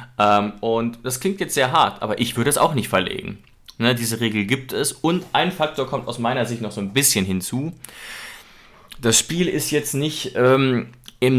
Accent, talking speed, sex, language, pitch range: German, 195 wpm, male, German, 110-140 Hz